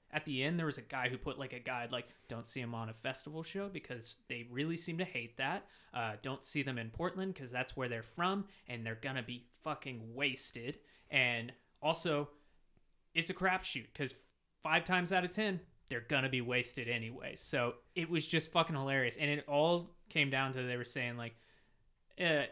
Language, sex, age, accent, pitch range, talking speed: English, male, 20-39, American, 125-160 Hz, 210 wpm